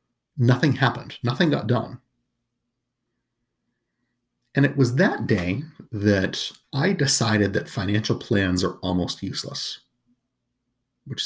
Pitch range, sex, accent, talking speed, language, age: 100-130 Hz, male, American, 105 wpm, English, 30-49